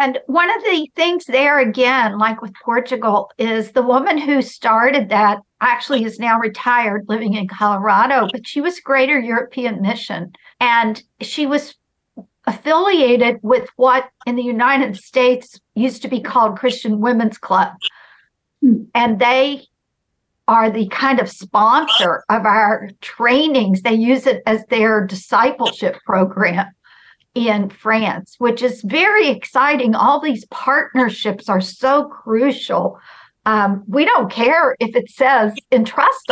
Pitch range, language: 215-265 Hz, English